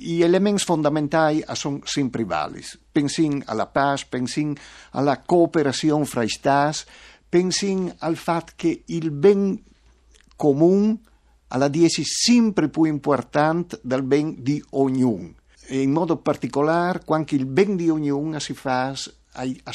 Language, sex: Italian, male